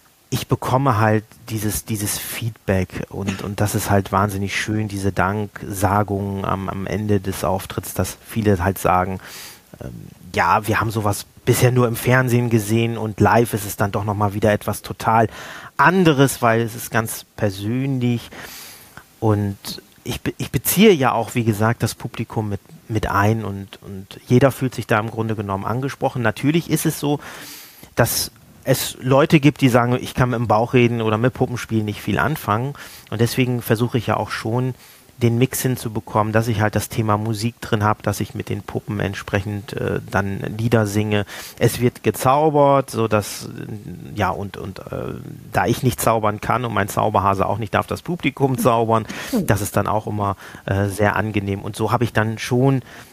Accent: German